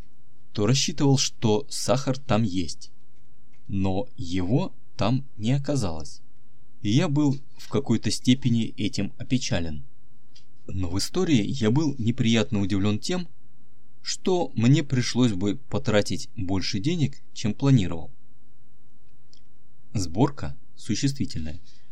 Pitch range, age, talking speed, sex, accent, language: 105-130 Hz, 20-39, 105 wpm, male, native, Russian